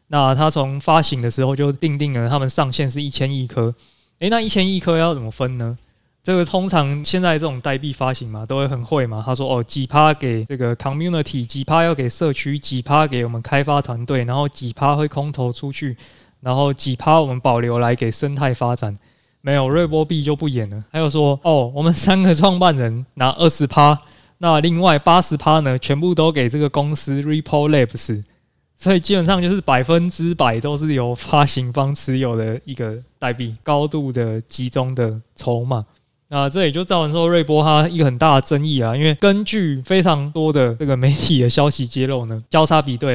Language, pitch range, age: Chinese, 125-155 Hz, 20-39